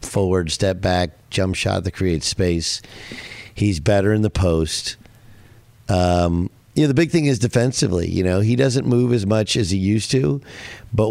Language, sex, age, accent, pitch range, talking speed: English, male, 50-69, American, 95-125 Hz, 180 wpm